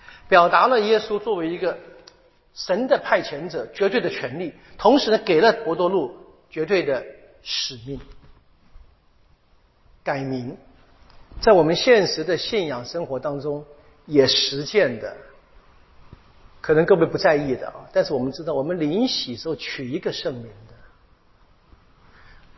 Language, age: Chinese, 50-69